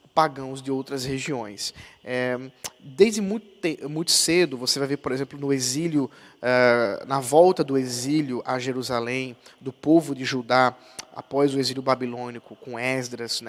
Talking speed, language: 135 wpm, Portuguese